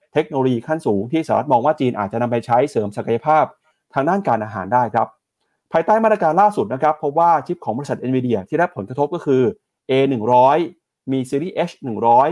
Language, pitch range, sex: Thai, 125-165 Hz, male